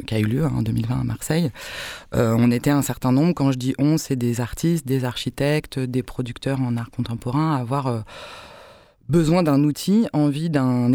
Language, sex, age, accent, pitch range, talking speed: French, female, 20-39, French, 120-145 Hz, 205 wpm